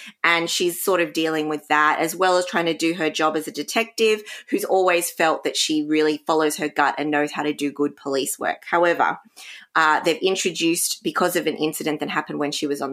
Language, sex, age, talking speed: English, female, 20-39, 230 wpm